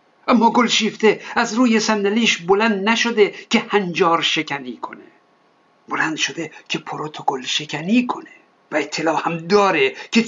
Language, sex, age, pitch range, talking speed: Persian, male, 60-79, 185-225 Hz, 135 wpm